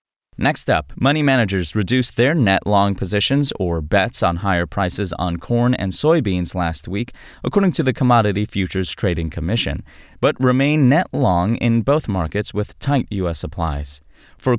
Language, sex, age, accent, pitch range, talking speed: English, male, 20-39, American, 95-135 Hz, 160 wpm